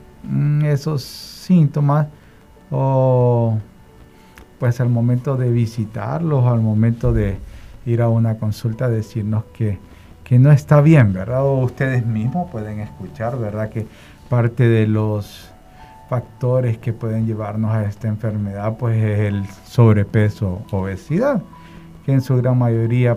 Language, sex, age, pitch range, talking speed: Spanish, male, 50-69, 110-130 Hz, 125 wpm